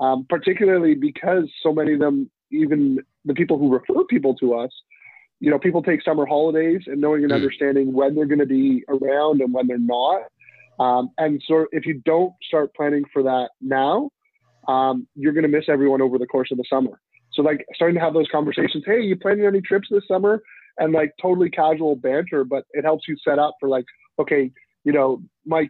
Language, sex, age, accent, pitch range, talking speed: English, male, 20-39, American, 135-160 Hz, 210 wpm